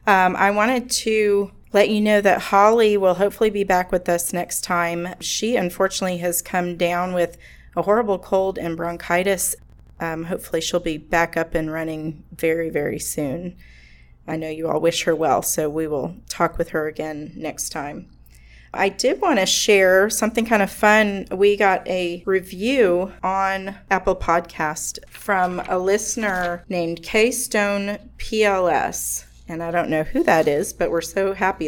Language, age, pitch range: English, 30-49, 165-200 Hz